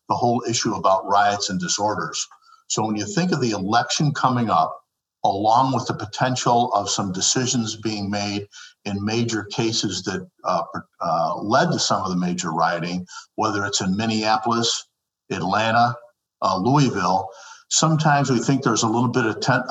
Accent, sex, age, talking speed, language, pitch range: American, male, 50-69, 165 wpm, English, 100-125 Hz